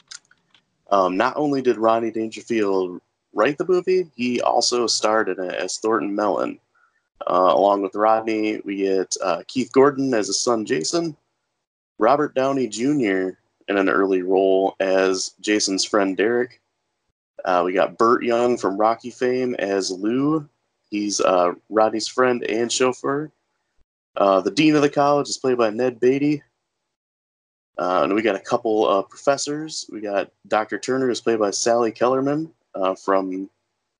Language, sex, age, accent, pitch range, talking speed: English, male, 20-39, American, 100-125 Hz, 155 wpm